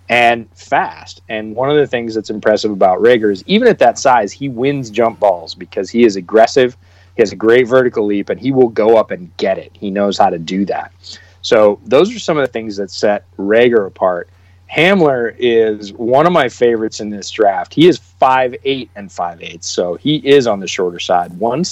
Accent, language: American, English